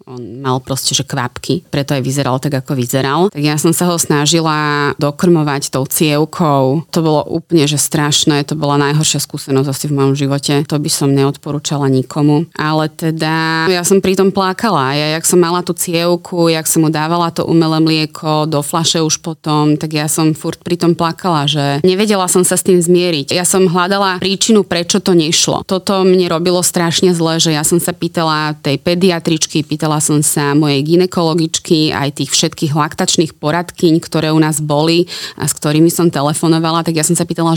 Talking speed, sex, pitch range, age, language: 185 wpm, female, 150-185 Hz, 20-39, Slovak